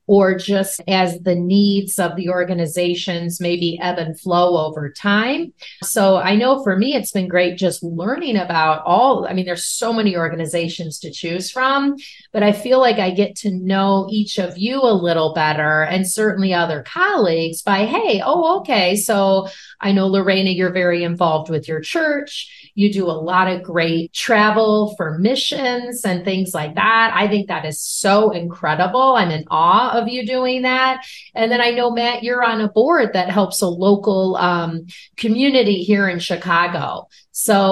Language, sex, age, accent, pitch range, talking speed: English, female, 30-49, American, 180-225 Hz, 180 wpm